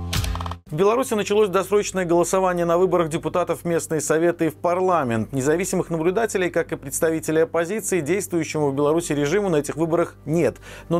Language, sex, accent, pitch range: Russian, male, native, 145-185 Hz